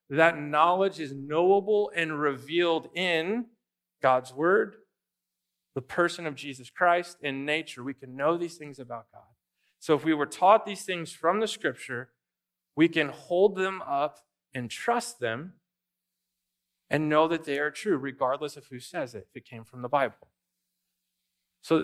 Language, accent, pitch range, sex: English, American, 140-180 Hz, male